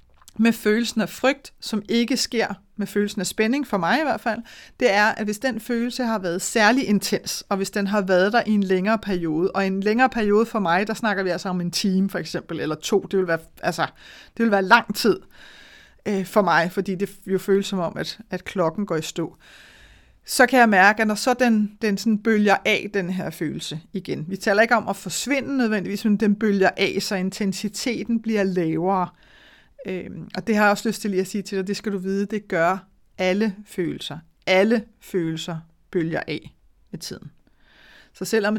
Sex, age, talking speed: female, 30-49, 205 wpm